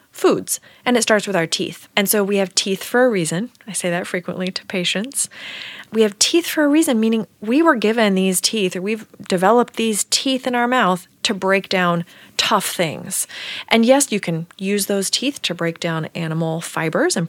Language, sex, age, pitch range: English, female, 30-49, 180-235 Hz